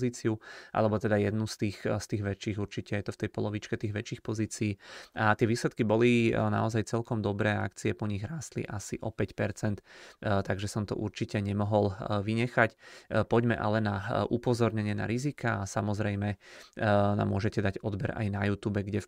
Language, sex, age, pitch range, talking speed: Czech, male, 20-39, 105-115 Hz, 175 wpm